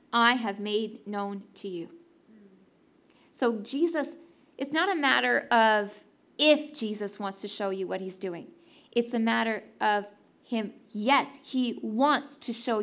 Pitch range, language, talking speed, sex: 210-280 Hz, English, 150 wpm, female